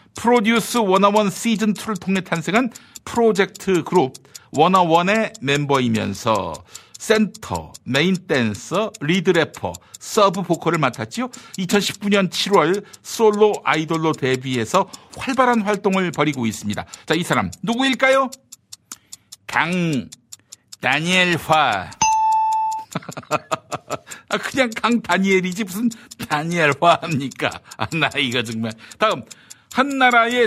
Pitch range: 140-235 Hz